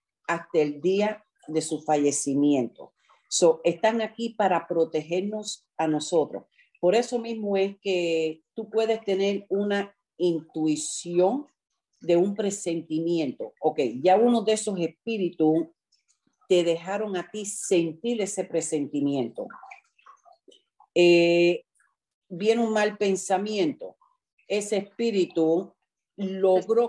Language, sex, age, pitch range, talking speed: Spanish, female, 50-69, 165-215 Hz, 105 wpm